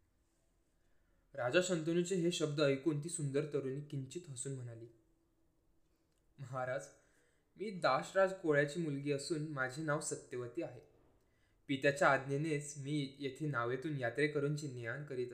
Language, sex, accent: Marathi, male, native